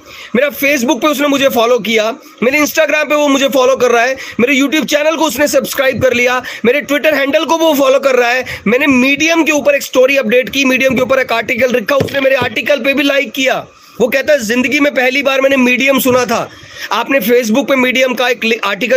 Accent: native